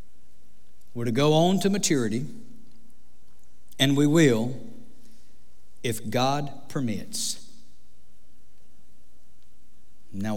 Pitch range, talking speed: 120-170 Hz, 75 wpm